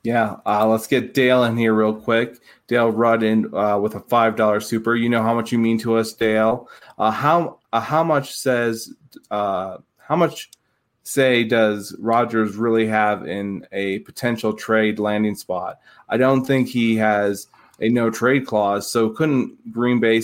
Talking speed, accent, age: 180 wpm, American, 20-39